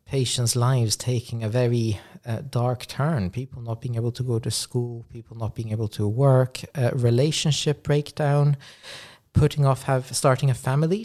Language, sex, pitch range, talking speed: English, male, 115-140 Hz, 165 wpm